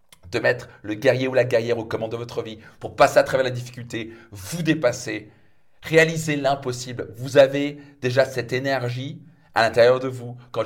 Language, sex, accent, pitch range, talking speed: French, male, French, 115-145 Hz, 180 wpm